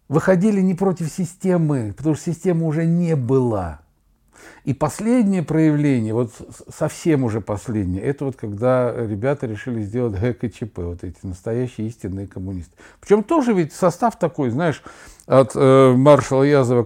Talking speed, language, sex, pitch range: 140 wpm, Russian, male, 115-145 Hz